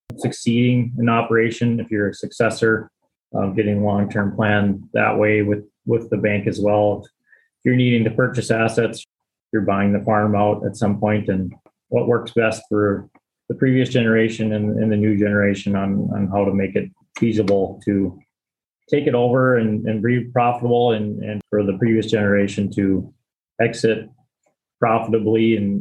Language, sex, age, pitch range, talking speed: English, male, 20-39, 100-115 Hz, 165 wpm